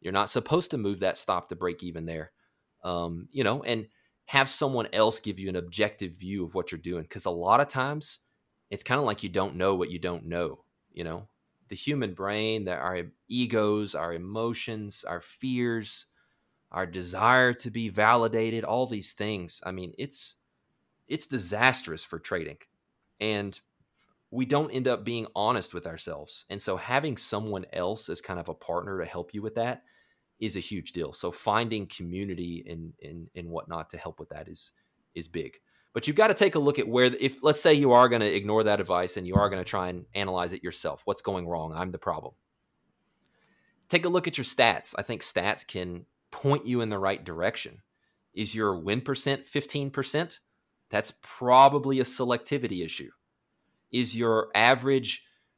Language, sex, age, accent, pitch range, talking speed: English, male, 30-49, American, 95-130 Hz, 190 wpm